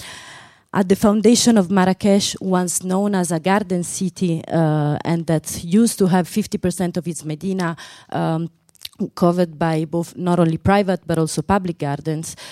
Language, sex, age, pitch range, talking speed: English, female, 30-49, 165-195 Hz, 155 wpm